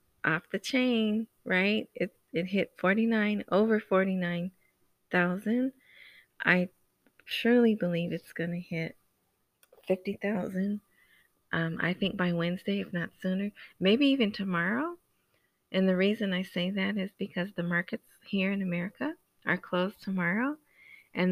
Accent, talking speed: American, 125 wpm